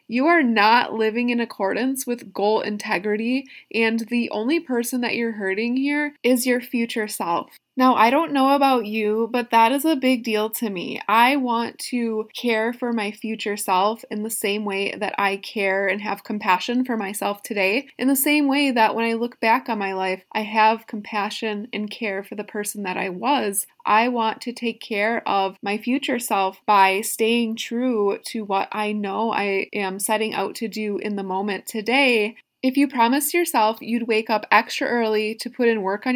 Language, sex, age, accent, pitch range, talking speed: English, female, 20-39, American, 210-250 Hz, 195 wpm